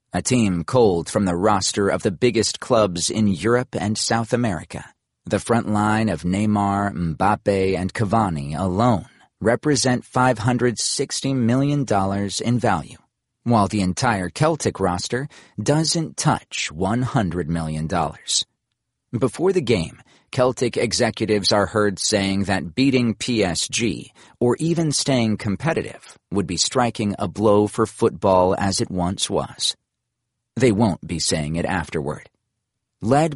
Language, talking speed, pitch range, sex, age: English, 130 wpm, 95-120 Hz, male, 40-59